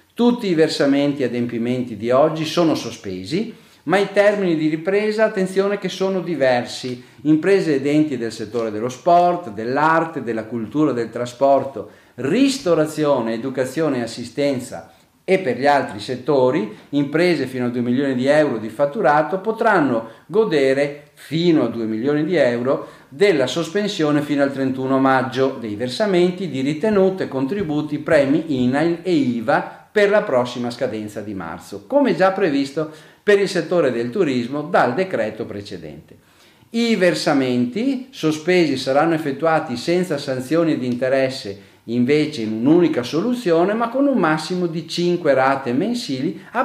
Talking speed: 140 wpm